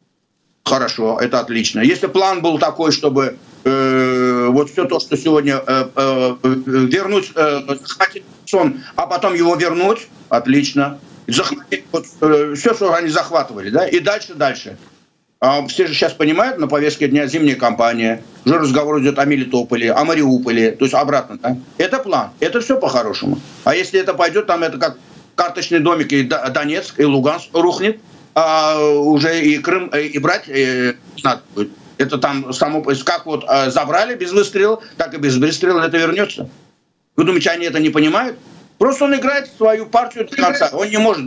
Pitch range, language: 140-210 Hz, Russian